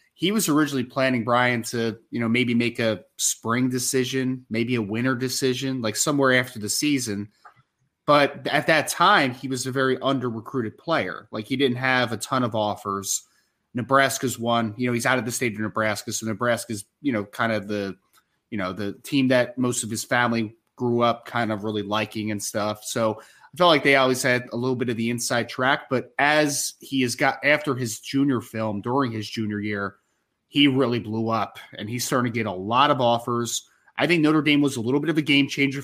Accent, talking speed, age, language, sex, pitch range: American, 215 wpm, 20-39, English, male, 115-135 Hz